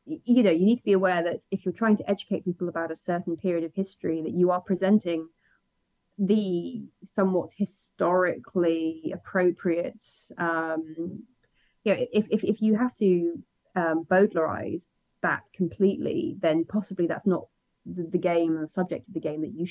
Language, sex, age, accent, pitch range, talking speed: English, female, 30-49, British, 165-195 Hz, 165 wpm